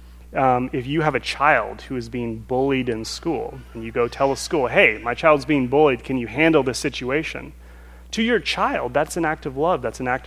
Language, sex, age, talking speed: English, male, 30-49, 230 wpm